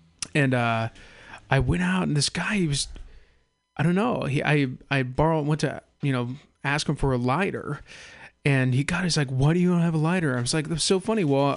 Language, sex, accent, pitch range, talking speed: English, male, American, 130-170 Hz, 220 wpm